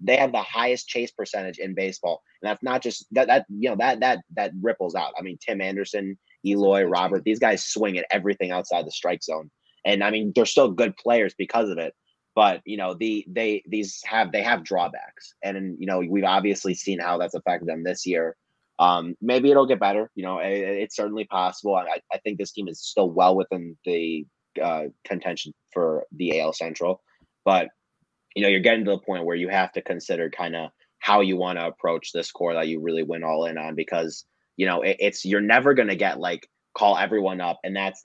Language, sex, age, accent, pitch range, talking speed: English, male, 30-49, American, 85-100 Hz, 220 wpm